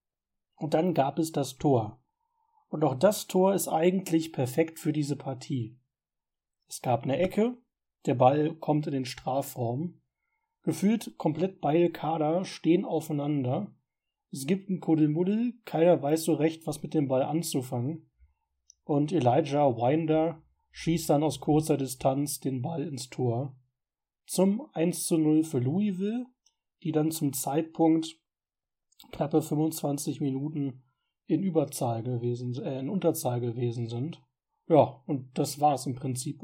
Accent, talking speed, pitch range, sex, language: German, 135 wpm, 135-170 Hz, male, German